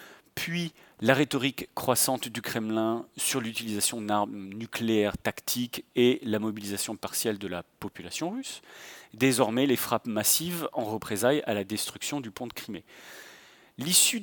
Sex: male